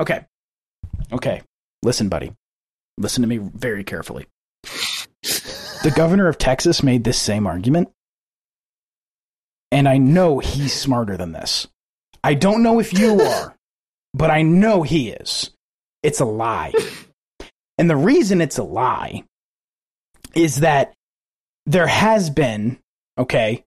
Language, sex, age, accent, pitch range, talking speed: English, male, 30-49, American, 130-175 Hz, 125 wpm